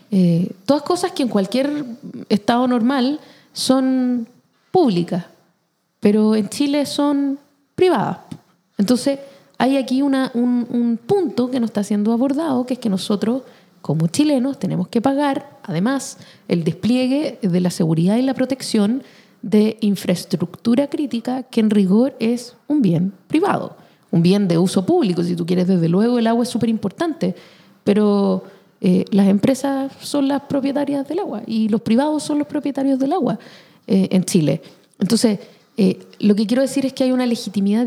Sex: female